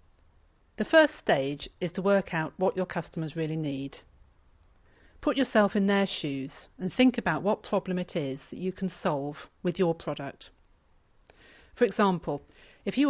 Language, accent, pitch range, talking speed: English, British, 150-205 Hz, 160 wpm